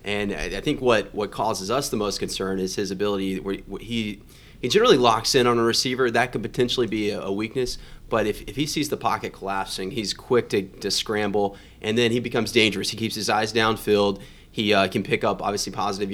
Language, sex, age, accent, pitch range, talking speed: English, male, 30-49, American, 100-120 Hz, 215 wpm